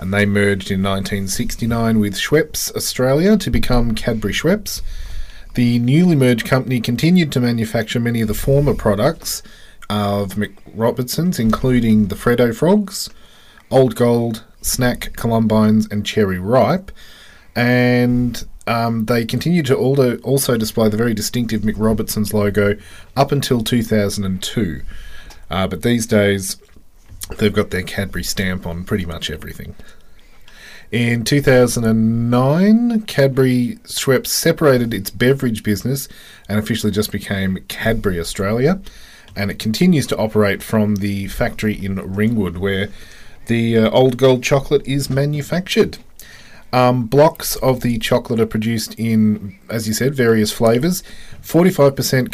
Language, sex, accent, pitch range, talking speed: English, male, Australian, 105-130 Hz, 130 wpm